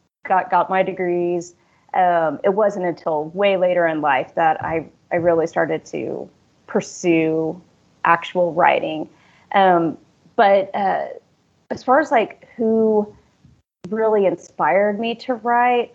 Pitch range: 175-210 Hz